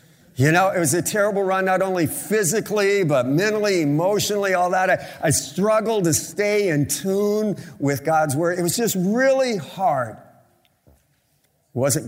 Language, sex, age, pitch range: English, male, 50-69, 105-175 Hz